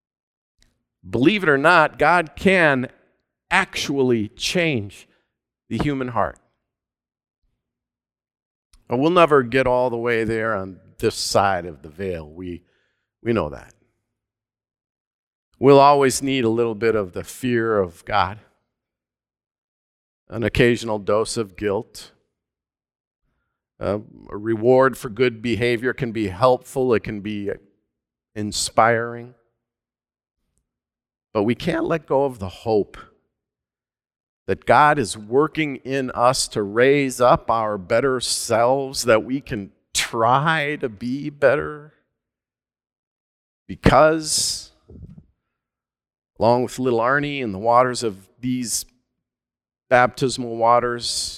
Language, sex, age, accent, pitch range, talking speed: English, male, 50-69, American, 105-130 Hz, 115 wpm